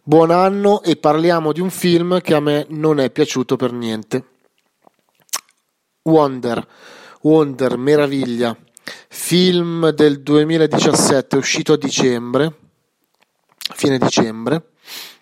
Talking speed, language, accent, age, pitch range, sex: 105 wpm, Italian, native, 30-49, 125-165 Hz, male